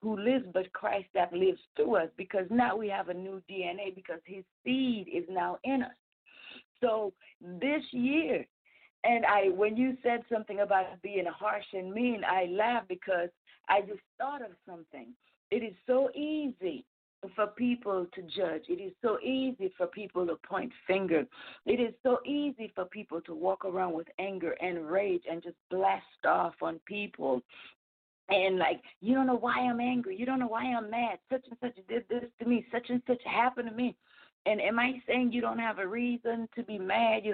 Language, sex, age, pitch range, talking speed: English, female, 40-59, 190-245 Hz, 195 wpm